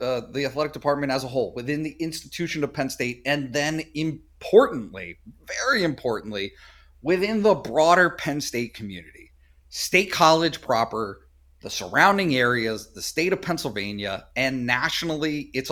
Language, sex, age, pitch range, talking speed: English, male, 30-49, 100-155 Hz, 140 wpm